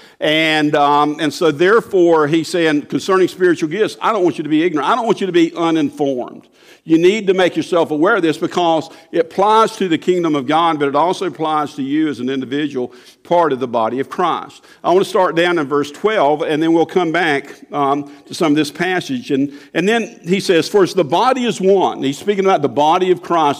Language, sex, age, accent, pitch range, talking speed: English, male, 50-69, American, 135-180 Hz, 230 wpm